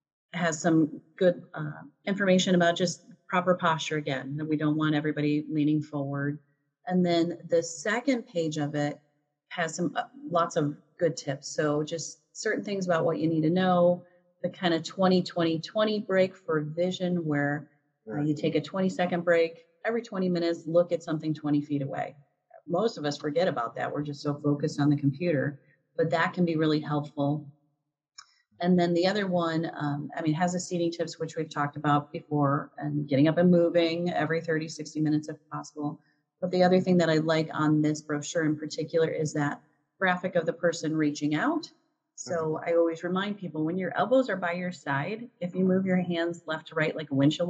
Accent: American